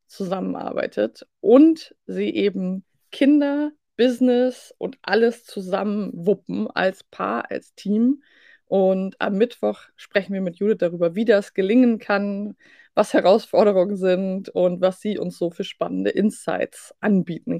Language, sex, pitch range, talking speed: German, female, 190-240 Hz, 130 wpm